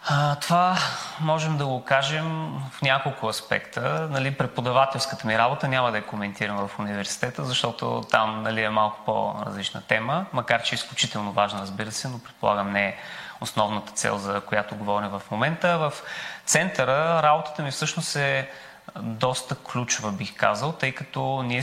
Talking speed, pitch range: 160 wpm, 110-135 Hz